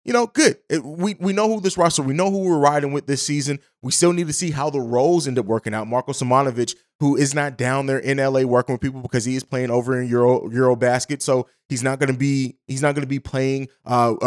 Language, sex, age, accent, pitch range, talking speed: English, male, 20-39, American, 130-165 Hz, 255 wpm